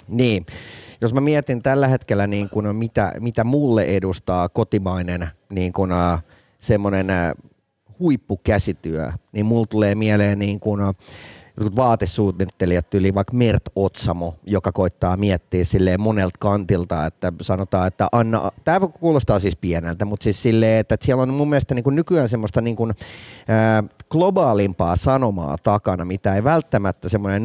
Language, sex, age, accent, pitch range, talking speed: Finnish, male, 30-49, native, 95-120 Hz, 135 wpm